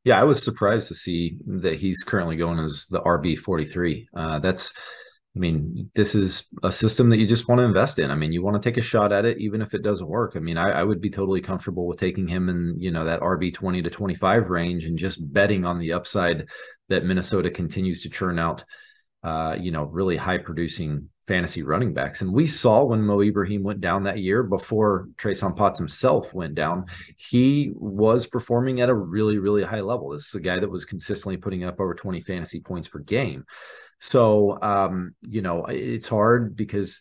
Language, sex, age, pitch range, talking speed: English, male, 30-49, 90-110 Hz, 210 wpm